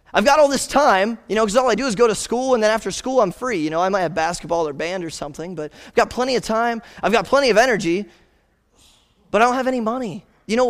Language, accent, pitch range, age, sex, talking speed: English, American, 180-250 Hz, 20-39, male, 280 wpm